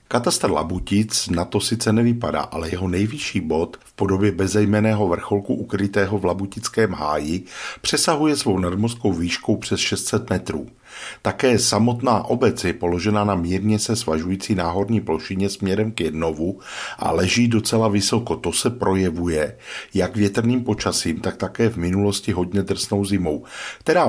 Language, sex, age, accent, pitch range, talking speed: Czech, male, 50-69, native, 90-110 Hz, 140 wpm